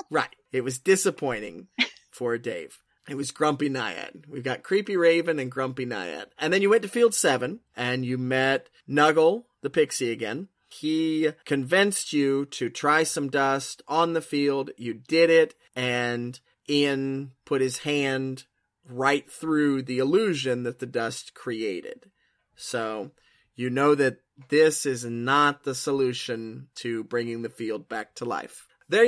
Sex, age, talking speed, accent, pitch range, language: male, 30-49, 155 wpm, American, 125-160 Hz, English